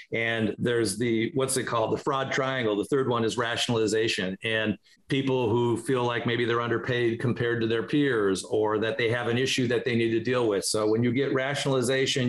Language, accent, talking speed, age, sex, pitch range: English, American, 210 wpm, 50-69, male, 110-130 Hz